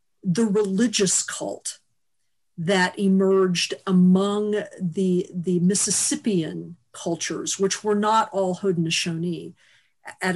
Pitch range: 180-210 Hz